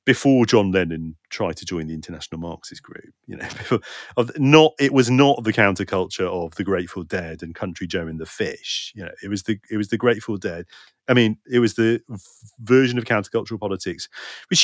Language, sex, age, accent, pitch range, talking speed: English, male, 40-59, British, 95-125 Hz, 200 wpm